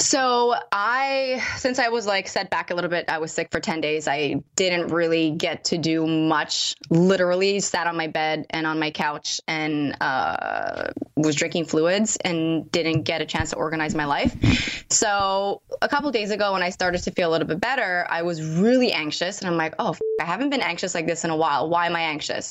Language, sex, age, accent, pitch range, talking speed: English, female, 20-39, American, 165-205 Hz, 220 wpm